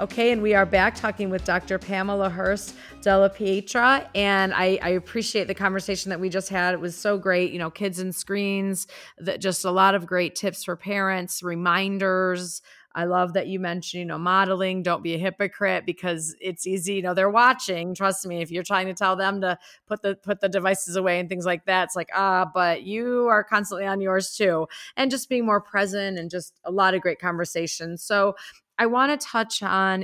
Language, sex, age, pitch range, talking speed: English, female, 30-49, 175-195 Hz, 215 wpm